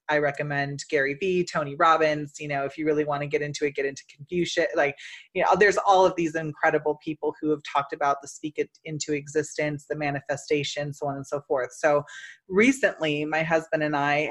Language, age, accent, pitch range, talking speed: English, 30-49, American, 145-170 Hz, 210 wpm